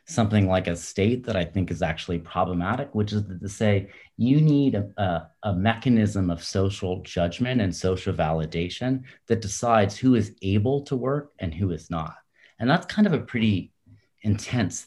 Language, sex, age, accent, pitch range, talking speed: English, male, 30-49, American, 90-110 Hz, 175 wpm